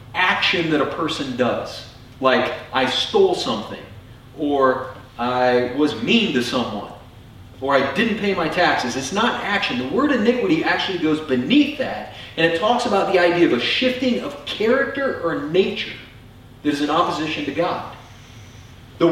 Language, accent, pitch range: English, American, 120-180 Hz